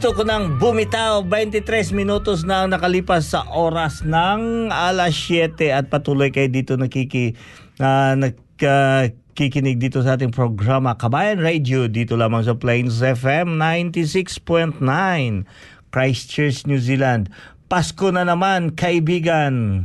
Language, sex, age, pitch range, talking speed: Filipino, male, 50-69, 130-175 Hz, 125 wpm